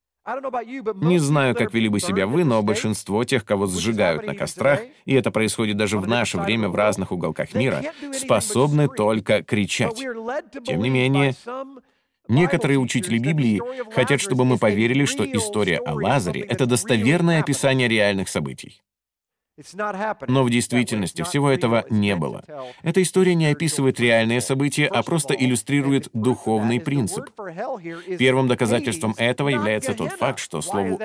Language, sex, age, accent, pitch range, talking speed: Russian, male, 30-49, native, 115-155 Hz, 140 wpm